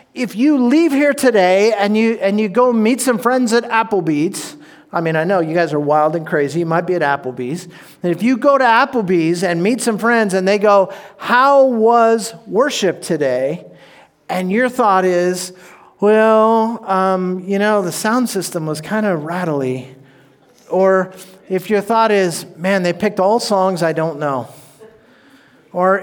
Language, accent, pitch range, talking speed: English, American, 180-250 Hz, 175 wpm